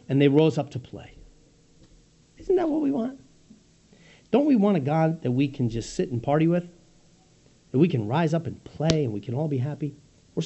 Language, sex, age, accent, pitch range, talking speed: English, male, 50-69, American, 115-155 Hz, 220 wpm